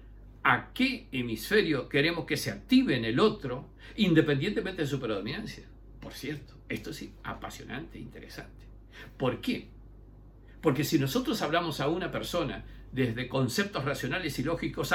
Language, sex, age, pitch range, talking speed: Spanish, male, 60-79, 110-150 Hz, 140 wpm